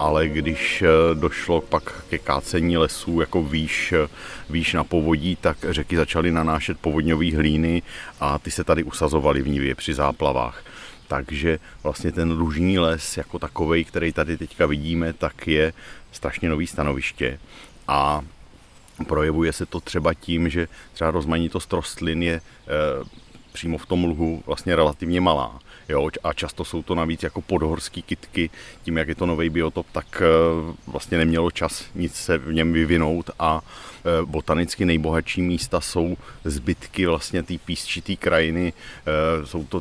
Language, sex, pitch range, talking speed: Czech, male, 80-85 Hz, 145 wpm